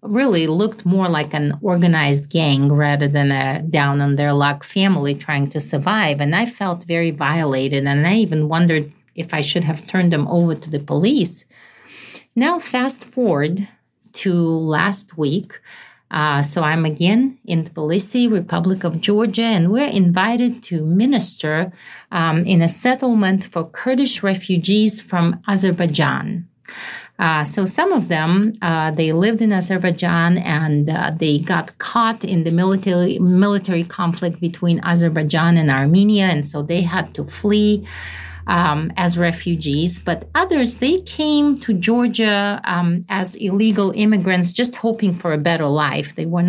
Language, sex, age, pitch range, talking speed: English, female, 40-59, 160-200 Hz, 145 wpm